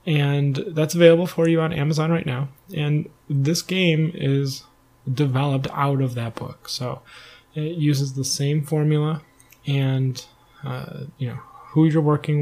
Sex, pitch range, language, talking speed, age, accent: male, 130-155 Hz, English, 150 wpm, 20-39, American